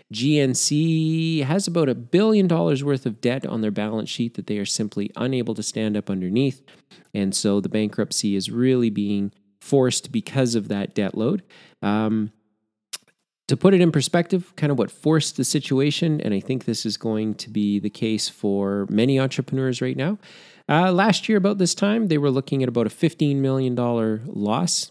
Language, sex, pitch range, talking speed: English, male, 110-165 Hz, 185 wpm